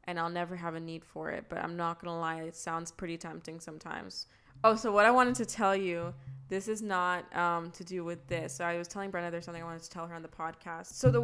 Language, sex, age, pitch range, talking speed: English, female, 20-39, 165-195 Hz, 280 wpm